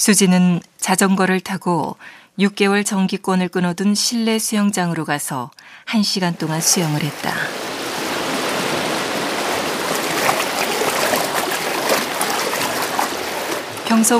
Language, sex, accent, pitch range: Korean, female, native, 170-205 Hz